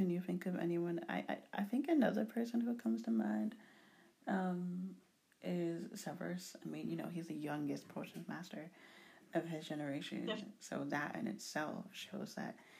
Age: 30-49